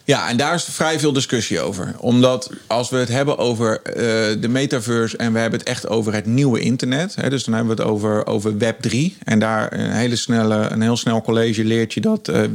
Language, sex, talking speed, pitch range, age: English, male, 220 wpm, 115-135 Hz, 40-59